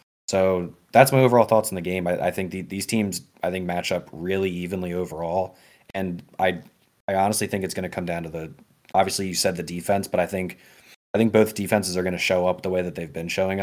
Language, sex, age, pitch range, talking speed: English, male, 20-39, 90-100 Hz, 245 wpm